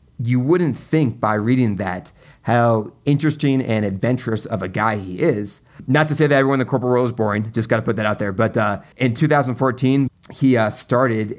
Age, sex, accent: 30-49, male, American